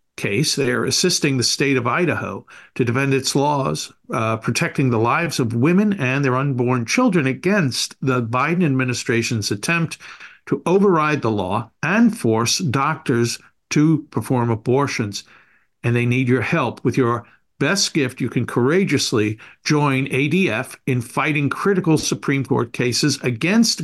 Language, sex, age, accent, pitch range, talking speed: English, male, 60-79, American, 125-165 Hz, 145 wpm